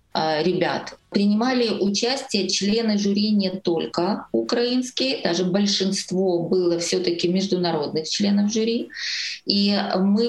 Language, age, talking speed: Ukrainian, 20-39, 100 wpm